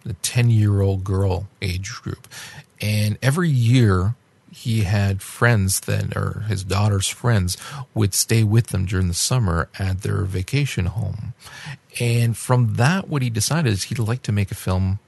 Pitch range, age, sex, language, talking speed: 100-120 Hz, 40-59, male, English, 160 wpm